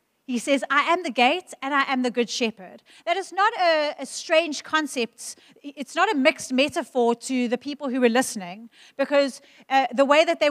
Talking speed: 205 wpm